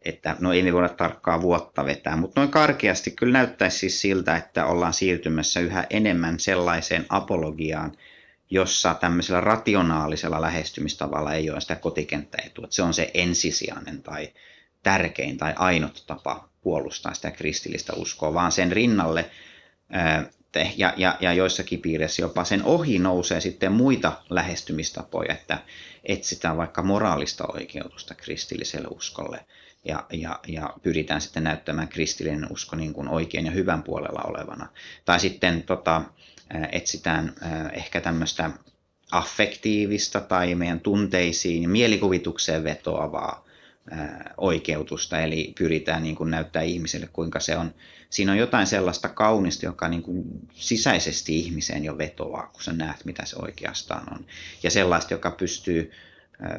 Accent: native